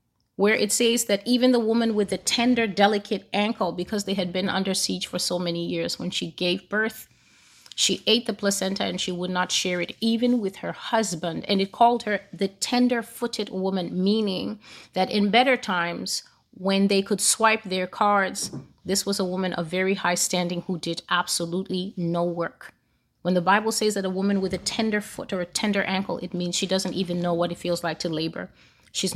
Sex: female